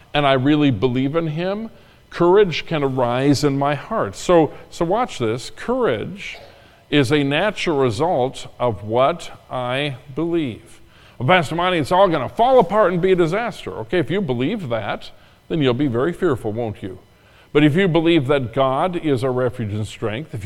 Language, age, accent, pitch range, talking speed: English, 50-69, American, 125-170 Hz, 180 wpm